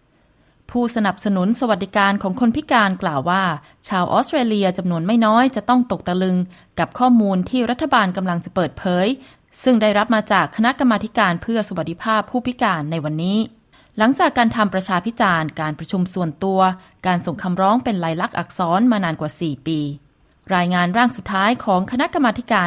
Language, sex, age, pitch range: Thai, female, 20-39, 175-230 Hz